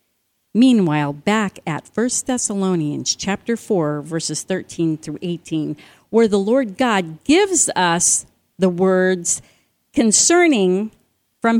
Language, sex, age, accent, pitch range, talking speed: English, female, 50-69, American, 170-240 Hz, 110 wpm